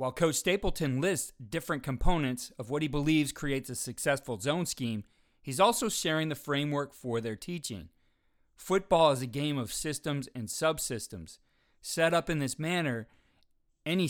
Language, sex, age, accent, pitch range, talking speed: English, male, 30-49, American, 125-160 Hz, 160 wpm